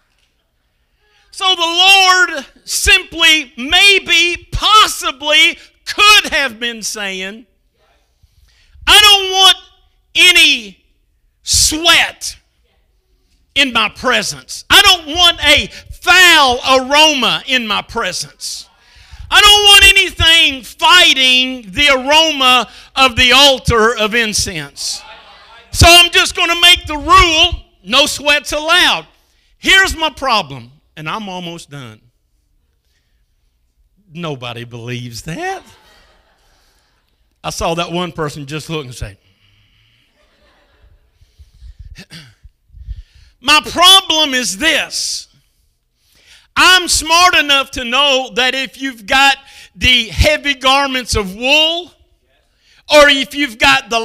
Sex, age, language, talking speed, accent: male, 50-69, English, 100 wpm, American